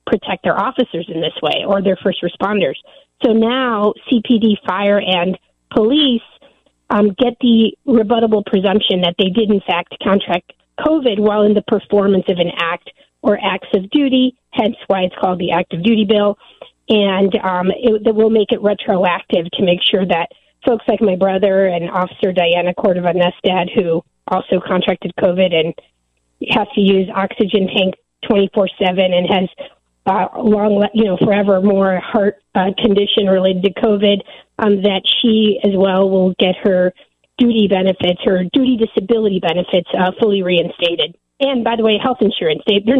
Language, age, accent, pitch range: English, 40-59, American, 185-220 Hz